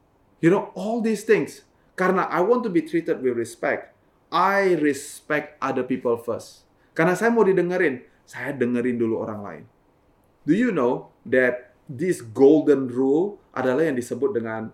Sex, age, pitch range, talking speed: male, 30-49, 120-165 Hz, 155 wpm